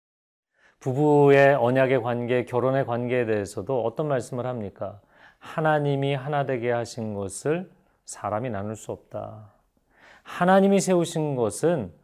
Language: Korean